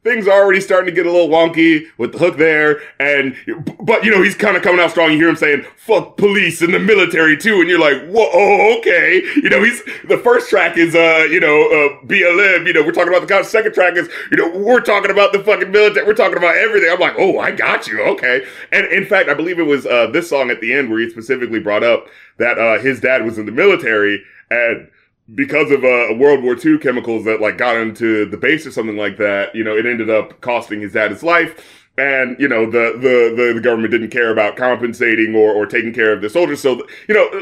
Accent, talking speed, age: American, 250 wpm, 30-49